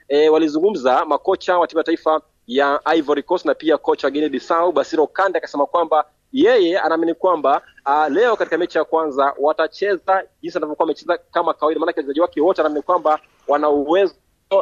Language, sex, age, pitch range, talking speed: Swahili, male, 30-49, 150-190 Hz, 170 wpm